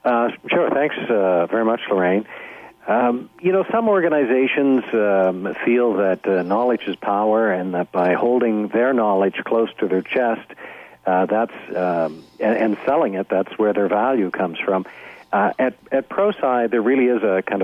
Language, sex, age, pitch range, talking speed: English, male, 60-79, 100-120 Hz, 175 wpm